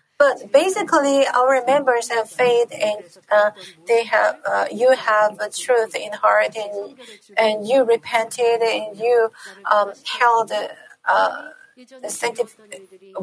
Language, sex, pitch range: Korean, female, 205-250 Hz